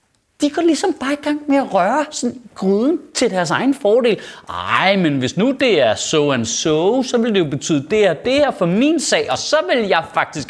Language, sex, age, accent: Danish, male, 30-49, native